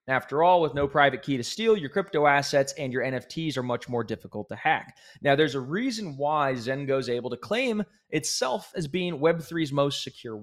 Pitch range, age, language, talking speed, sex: 130-175 Hz, 20-39, English, 205 wpm, male